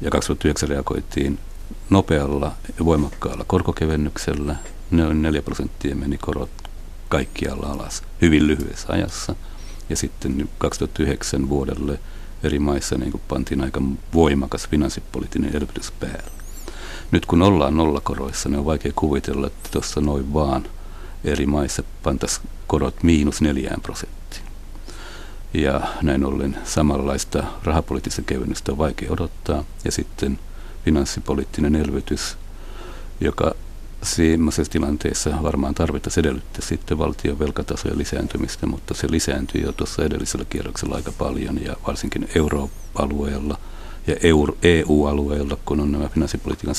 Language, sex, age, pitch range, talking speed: Finnish, male, 60-79, 70-80 Hz, 115 wpm